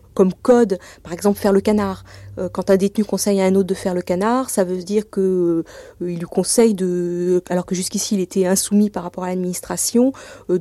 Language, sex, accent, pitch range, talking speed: French, female, French, 180-205 Hz, 215 wpm